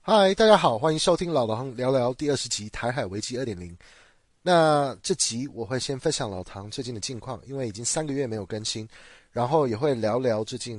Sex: male